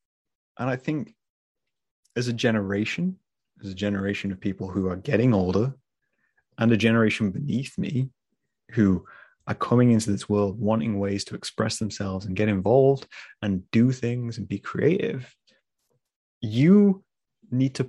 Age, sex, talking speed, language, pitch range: 30-49, male, 145 wpm, English, 100-120 Hz